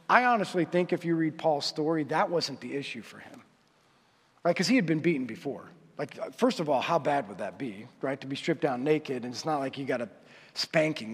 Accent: American